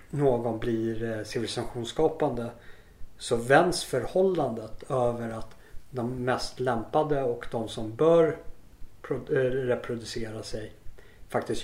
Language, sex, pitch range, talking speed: Swedish, male, 105-120 Hz, 95 wpm